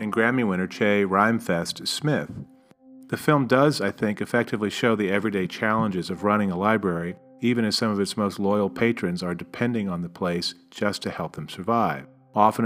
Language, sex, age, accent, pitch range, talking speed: English, male, 40-59, American, 90-120 Hz, 180 wpm